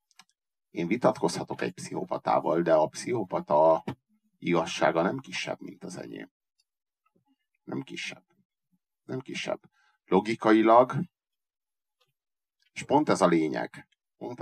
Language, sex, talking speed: Hungarian, male, 100 wpm